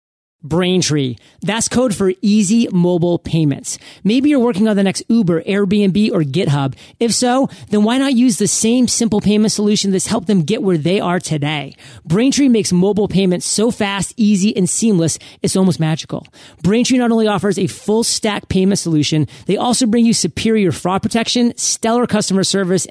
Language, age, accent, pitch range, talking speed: English, 30-49, American, 170-225 Hz, 175 wpm